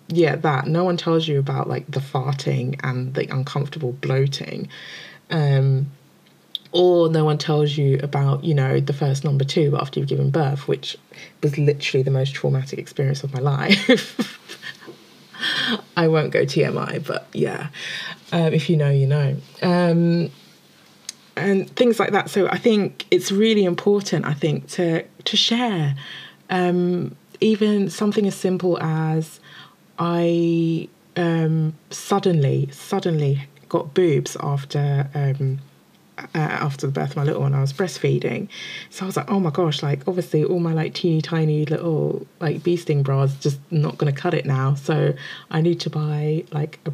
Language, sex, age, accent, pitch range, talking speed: English, female, 20-39, British, 145-175 Hz, 160 wpm